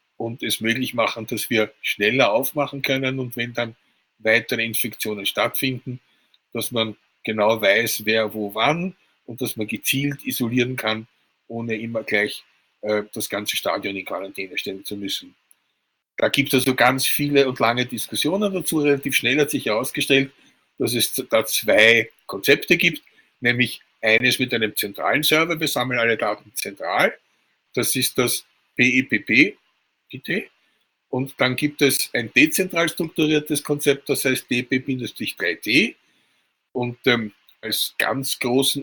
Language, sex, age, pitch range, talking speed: German, male, 50-69, 115-140 Hz, 140 wpm